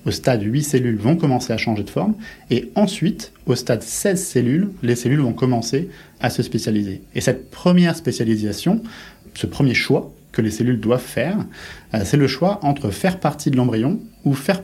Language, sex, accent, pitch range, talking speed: French, male, French, 110-150 Hz, 185 wpm